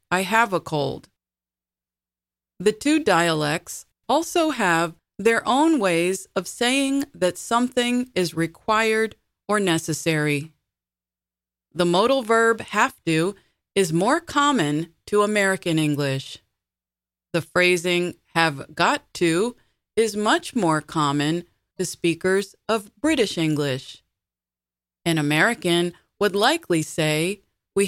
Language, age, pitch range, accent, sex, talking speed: English, 30-49, 150-205 Hz, American, female, 110 wpm